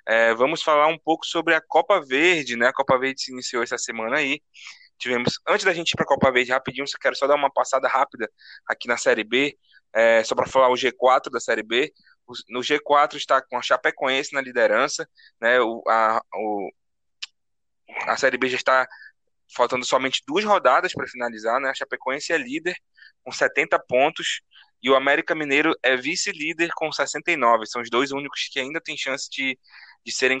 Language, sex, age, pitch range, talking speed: Portuguese, male, 20-39, 130-160 Hz, 195 wpm